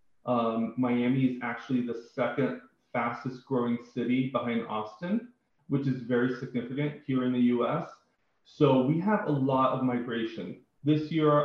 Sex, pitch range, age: male, 120-135 Hz, 30-49